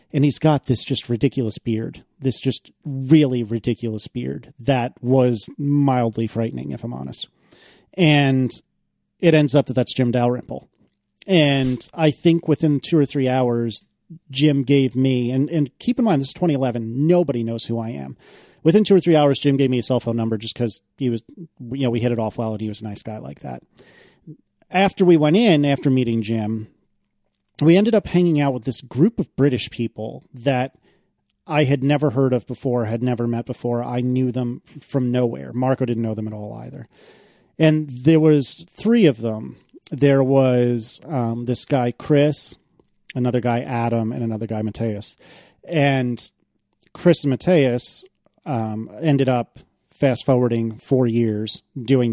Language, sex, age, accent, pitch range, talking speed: English, male, 40-59, American, 115-145 Hz, 175 wpm